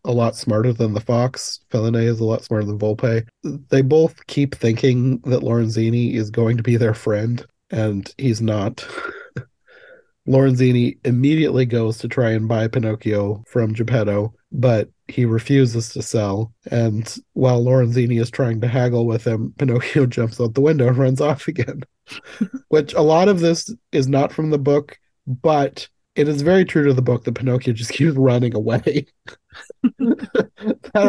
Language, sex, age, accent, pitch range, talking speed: English, male, 30-49, American, 115-145 Hz, 165 wpm